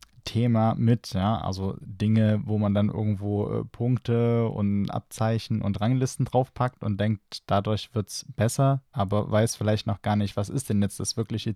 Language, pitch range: German, 100-120 Hz